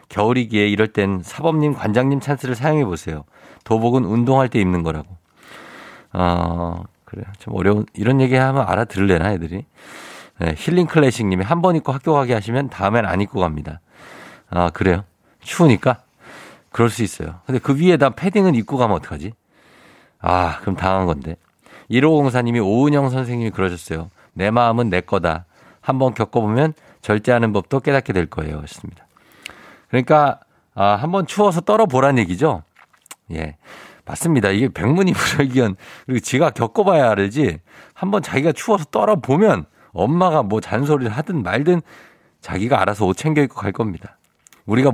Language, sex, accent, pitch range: Korean, male, native, 95-140 Hz